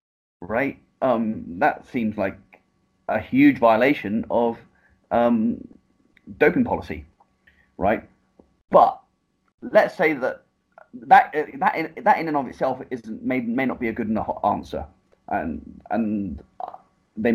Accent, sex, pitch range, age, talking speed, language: British, male, 105-130 Hz, 30-49, 120 wpm, English